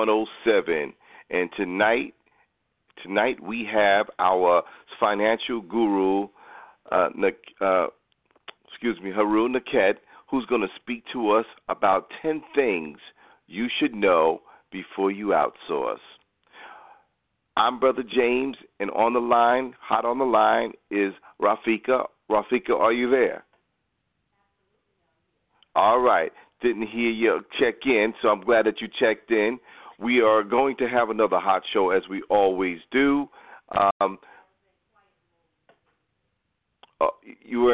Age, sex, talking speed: 40-59, male, 125 wpm